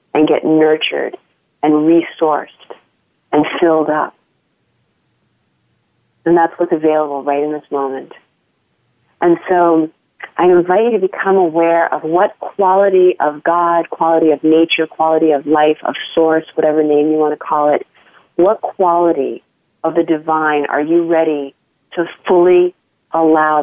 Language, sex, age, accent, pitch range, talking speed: English, female, 40-59, American, 150-170 Hz, 140 wpm